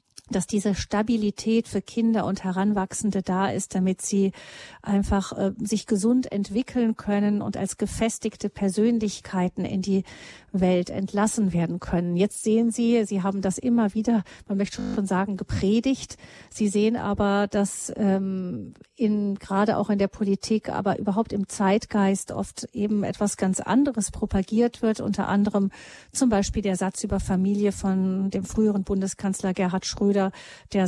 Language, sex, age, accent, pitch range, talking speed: German, female, 40-59, German, 195-220 Hz, 150 wpm